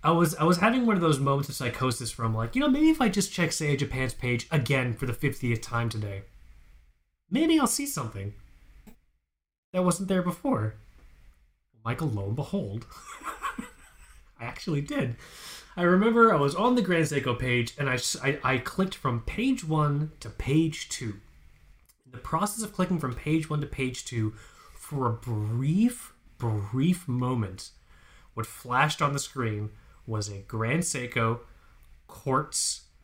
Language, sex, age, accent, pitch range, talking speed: English, male, 20-39, American, 110-170 Hz, 165 wpm